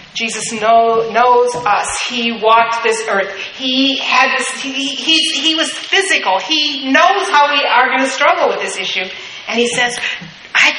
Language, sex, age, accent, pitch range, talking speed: English, female, 40-59, American, 215-265 Hz, 170 wpm